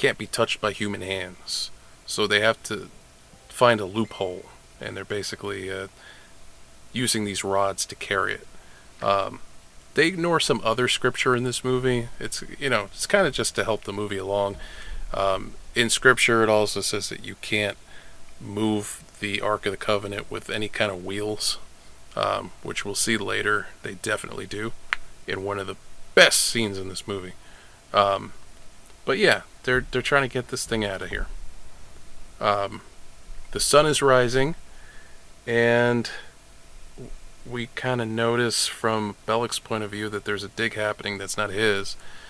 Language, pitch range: English, 100-120 Hz